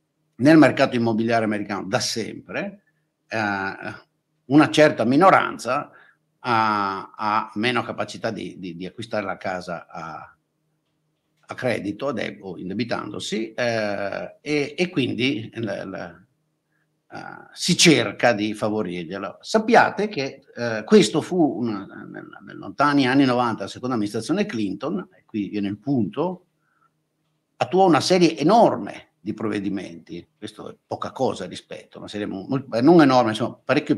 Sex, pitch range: male, 110-155 Hz